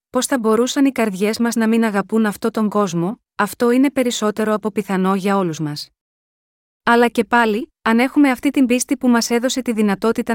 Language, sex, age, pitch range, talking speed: Greek, female, 20-39, 205-245 Hz, 190 wpm